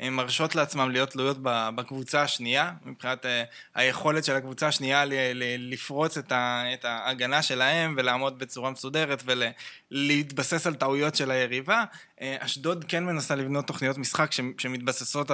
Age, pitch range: 20-39, 120-140 Hz